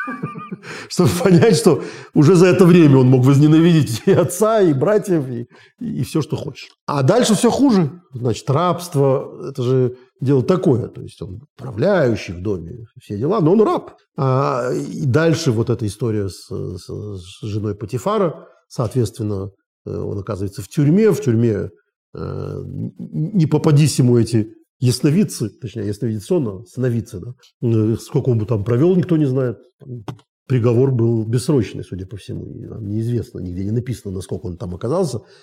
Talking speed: 150 wpm